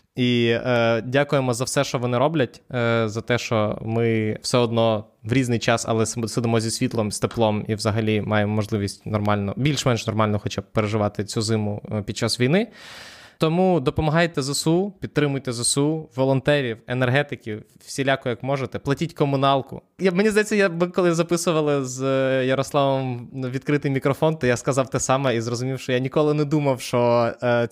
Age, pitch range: 20-39, 110-135 Hz